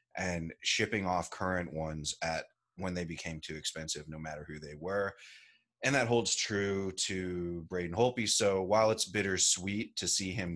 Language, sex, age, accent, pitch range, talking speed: English, male, 30-49, American, 85-100 Hz, 170 wpm